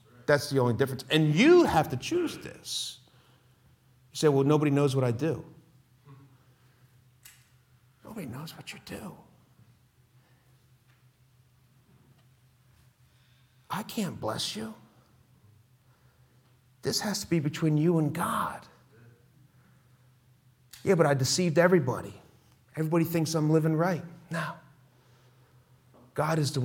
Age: 50-69